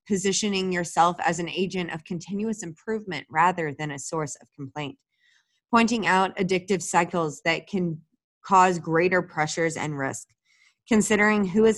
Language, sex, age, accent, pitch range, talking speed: English, female, 20-39, American, 150-195 Hz, 145 wpm